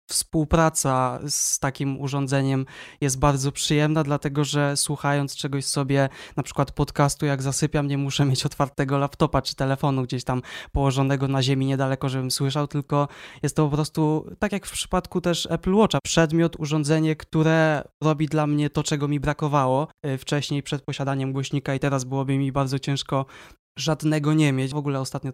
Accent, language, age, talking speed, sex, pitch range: native, Polish, 20-39, 165 wpm, male, 135-150 Hz